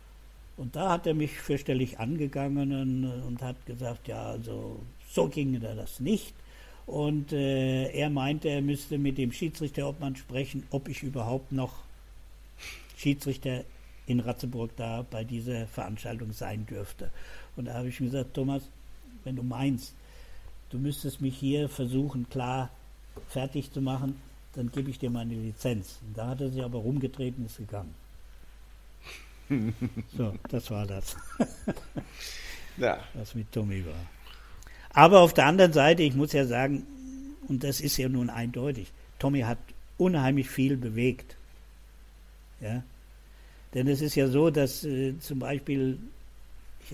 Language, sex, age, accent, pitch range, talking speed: German, male, 60-79, German, 115-140 Hz, 145 wpm